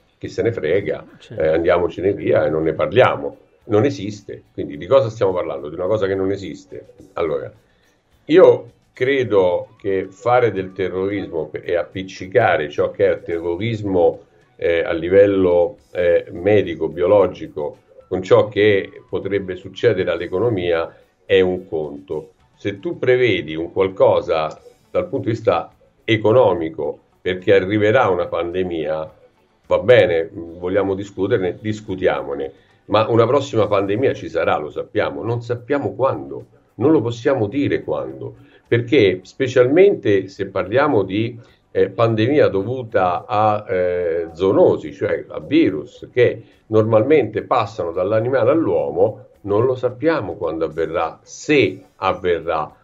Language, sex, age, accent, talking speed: Italian, male, 50-69, native, 130 wpm